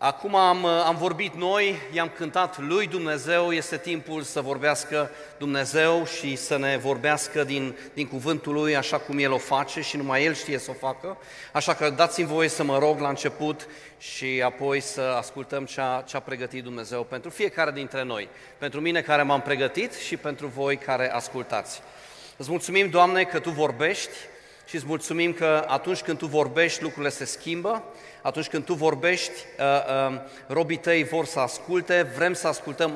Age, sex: 30-49, male